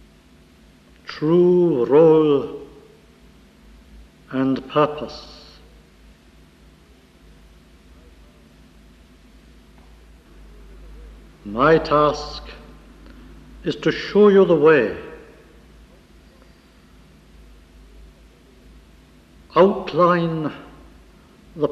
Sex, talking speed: male, 40 wpm